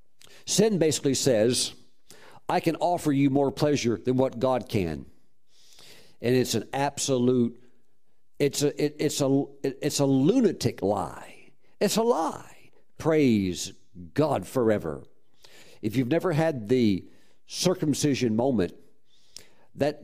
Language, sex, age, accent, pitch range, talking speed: English, male, 50-69, American, 125-155 Hz, 125 wpm